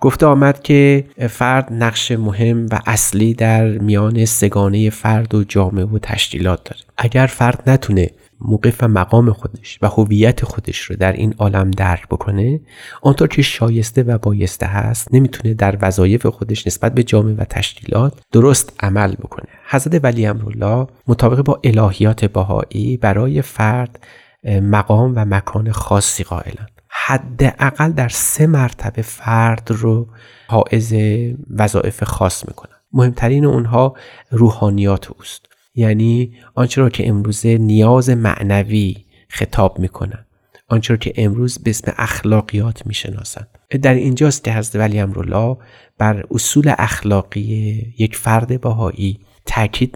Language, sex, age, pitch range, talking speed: Persian, male, 30-49, 105-120 Hz, 125 wpm